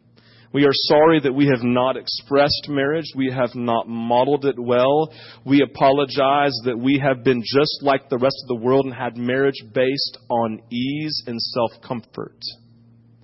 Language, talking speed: English, 165 wpm